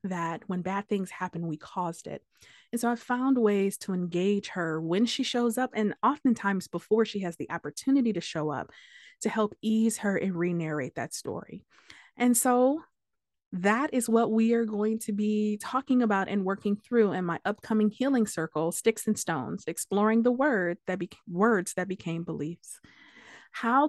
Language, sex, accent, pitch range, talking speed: English, female, American, 175-225 Hz, 180 wpm